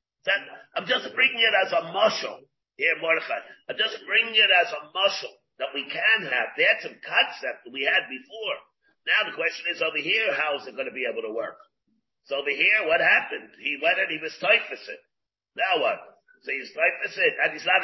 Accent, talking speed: American, 215 wpm